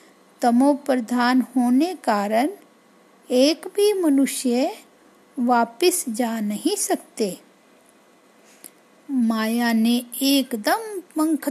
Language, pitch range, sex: Hindi, 240-315 Hz, female